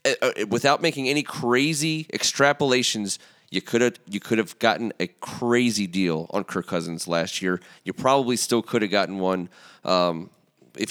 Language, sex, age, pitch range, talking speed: English, male, 30-49, 105-135 Hz, 165 wpm